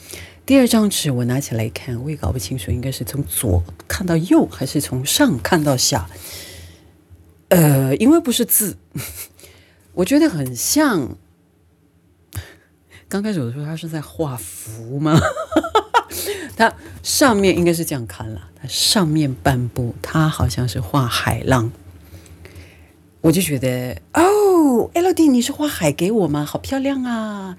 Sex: female